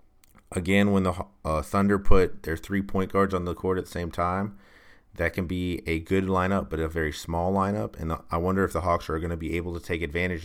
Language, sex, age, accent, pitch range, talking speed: English, male, 30-49, American, 80-95 Hz, 240 wpm